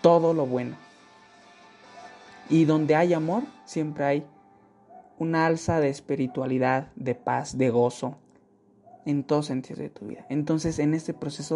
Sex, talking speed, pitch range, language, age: male, 140 wpm, 140-200 Hz, Spanish, 20-39